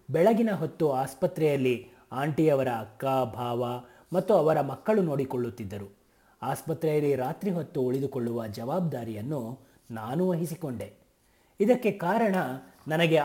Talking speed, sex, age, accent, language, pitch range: 90 wpm, male, 30-49, native, Kannada, 125-165 Hz